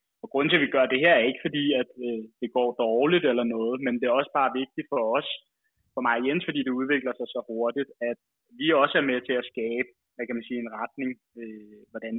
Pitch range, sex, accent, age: 120-130 Hz, male, native, 20-39